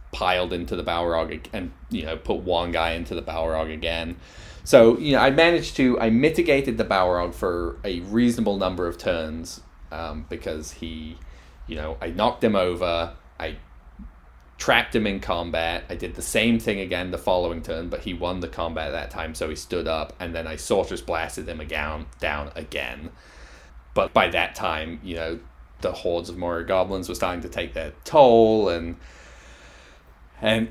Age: 20-39